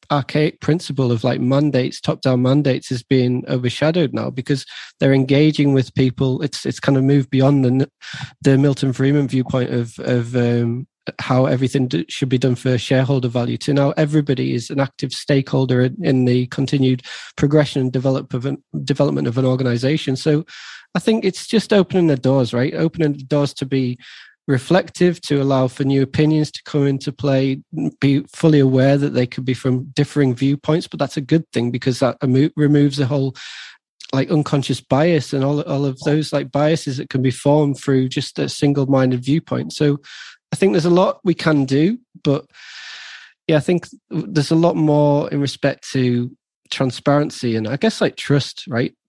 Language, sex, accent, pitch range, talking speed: English, male, British, 130-150 Hz, 180 wpm